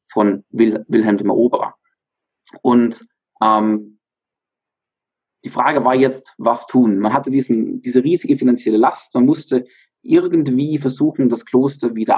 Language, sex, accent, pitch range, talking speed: German, male, German, 120-140 Hz, 135 wpm